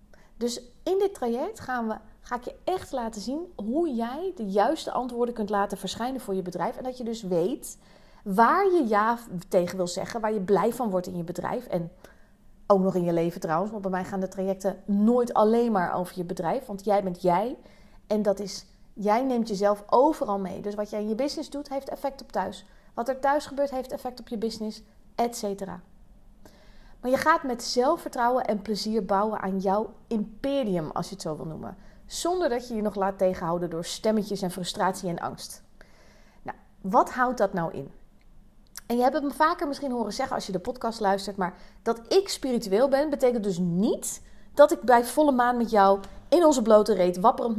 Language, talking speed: Dutch, 205 wpm